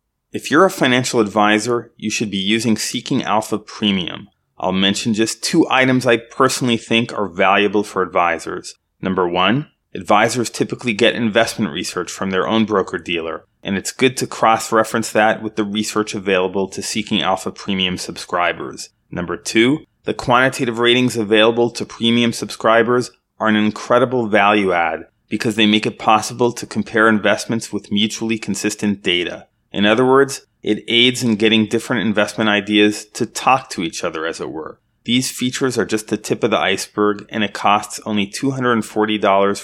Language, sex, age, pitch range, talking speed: English, male, 30-49, 100-115 Hz, 160 wpm